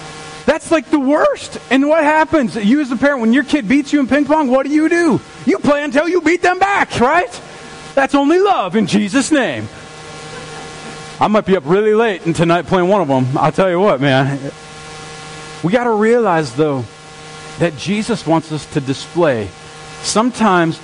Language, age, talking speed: English, 40-59, 190 wpm